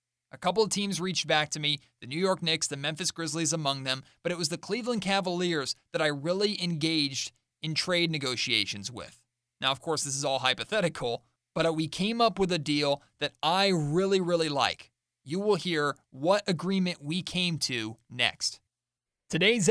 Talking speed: 185 wpm